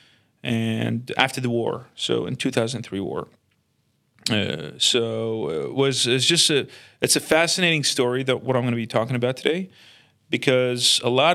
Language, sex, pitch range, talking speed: English, male, 120-150 Hz, 165 wpm